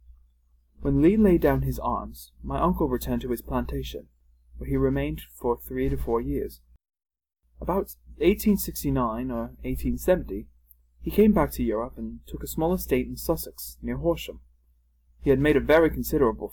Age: 20-39